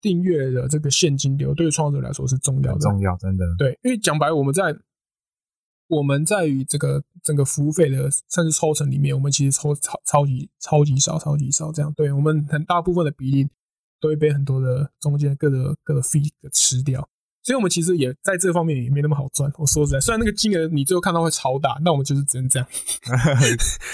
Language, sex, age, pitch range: Chinese, male, 20-39, 135-160 Hz